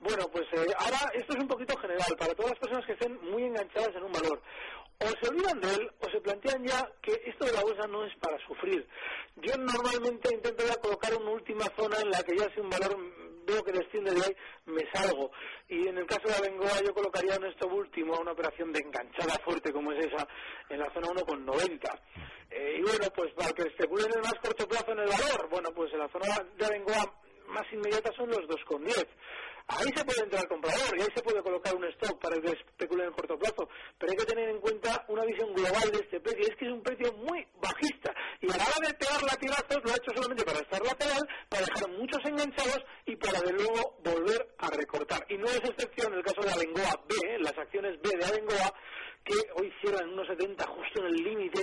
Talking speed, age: 230 wpm, 40-59